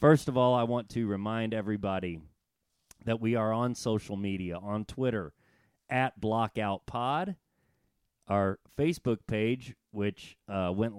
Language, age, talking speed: English, 40-59, 130 wpm